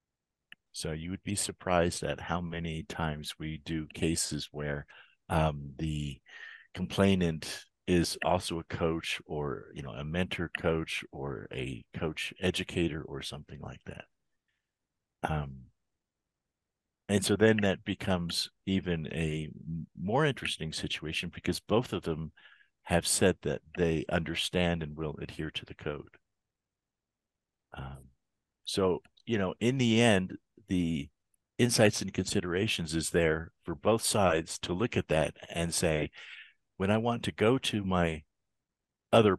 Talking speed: 135 wpm